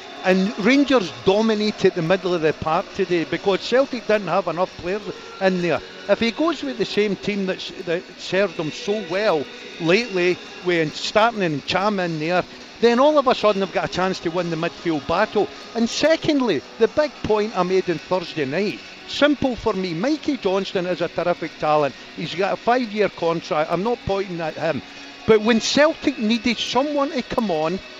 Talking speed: 190 wpm